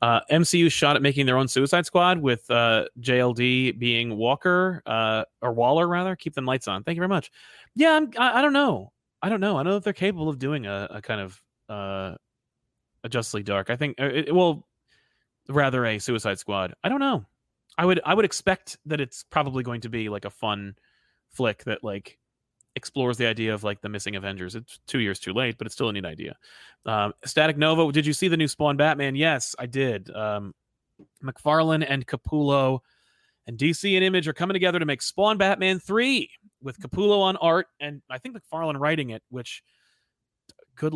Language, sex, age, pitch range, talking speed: English, male, 30-49, 115-165 Hz, 205 wpm